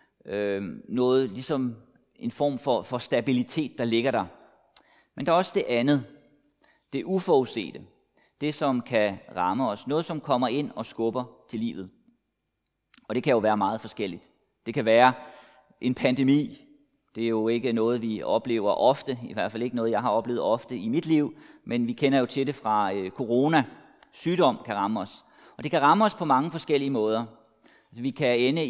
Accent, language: native, Danish